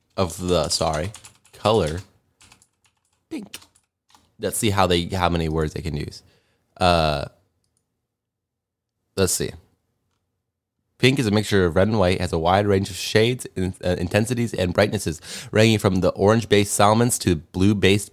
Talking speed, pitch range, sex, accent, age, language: 150 wpm, 90-115 Hz, male, American, 20-39, English